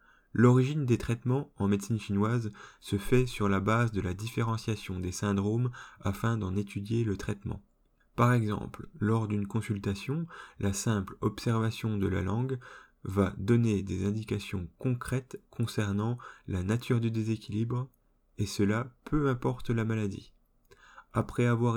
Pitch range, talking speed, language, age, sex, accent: 100-120 Hz, 140 wpm, French, 20-39, male, French